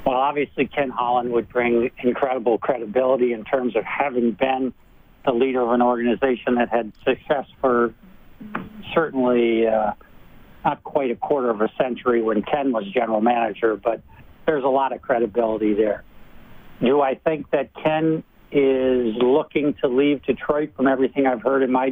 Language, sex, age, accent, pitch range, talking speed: English, male, 60-79, American, 120-140 Hz, 160 wpm